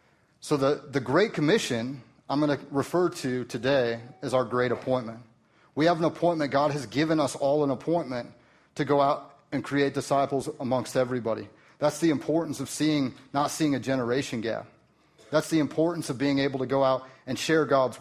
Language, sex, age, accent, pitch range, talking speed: English, male, 30-49, American, 125-150 Hz, 185 wpm